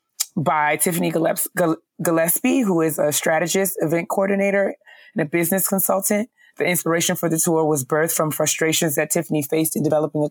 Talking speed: 165 wpm